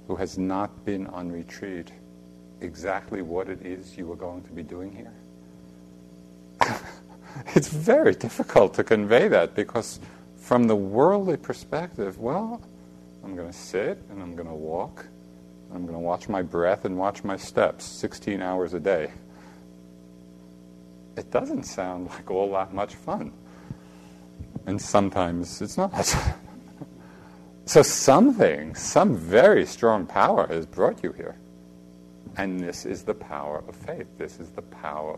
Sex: male